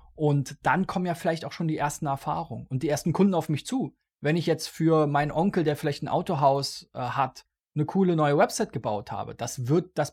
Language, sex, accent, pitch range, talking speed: German, male, German, 140-165 Hz, 225 wpm